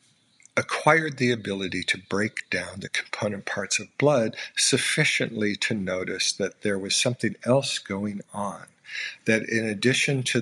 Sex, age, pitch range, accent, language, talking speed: male, 50-69, 105-140 Hz, American, English, 145 wpm